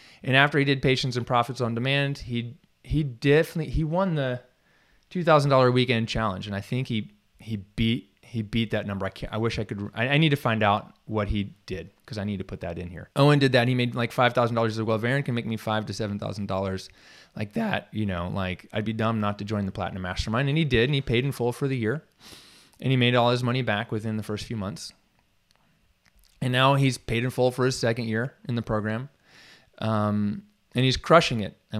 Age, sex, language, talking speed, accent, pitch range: 20-39, male, English, 240 wpm, American, 105-125 Hz